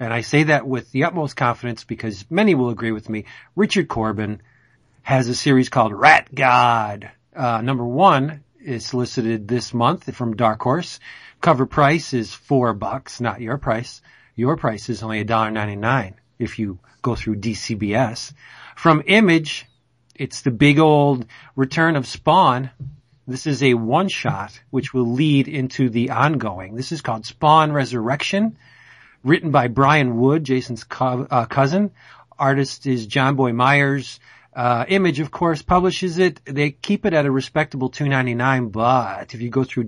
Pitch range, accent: 120-150 Hz, American